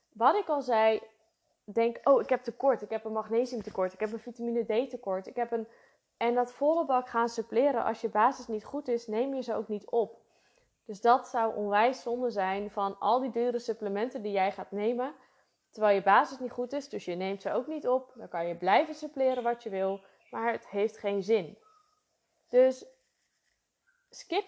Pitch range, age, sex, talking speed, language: 210-250 Hz, 20-39, female, 205 wpm, Dutch